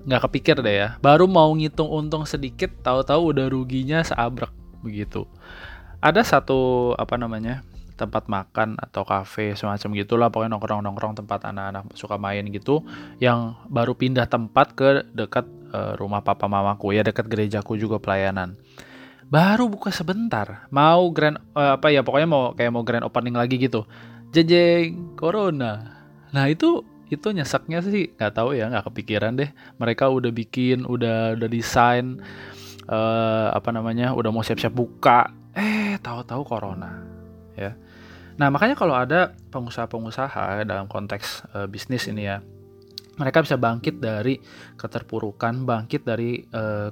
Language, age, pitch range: Indonesian, 20-39, 105-135 Hz